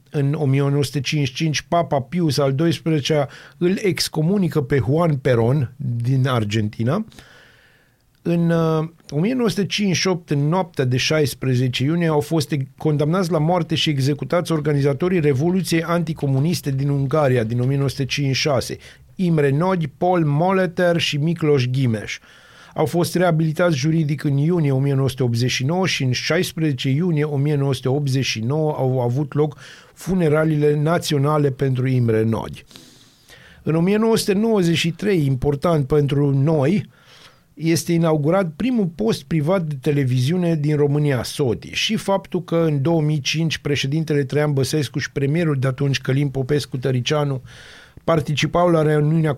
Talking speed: 115 wpm